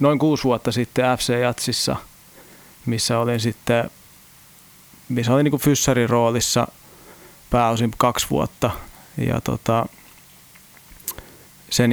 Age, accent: 30-49, native